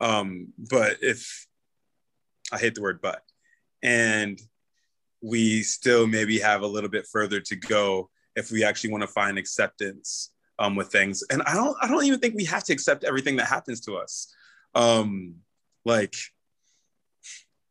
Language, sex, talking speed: English, male, 160 wpm